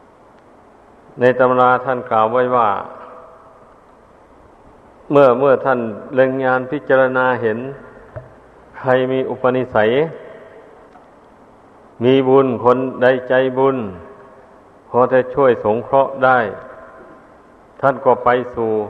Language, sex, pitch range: Thai, male, 120-135 Hz